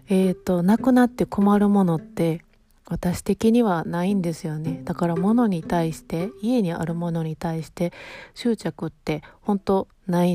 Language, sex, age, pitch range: Japanese, female, 30-49, 165-205 Hz